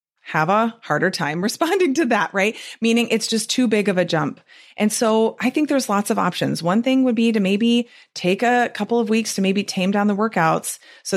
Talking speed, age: 225 wpm, 30-49